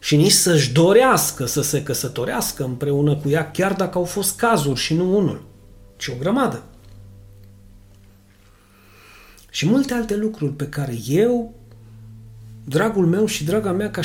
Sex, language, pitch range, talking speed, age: male, Romanian, 110-175 Hz, 145 wpm, 40-59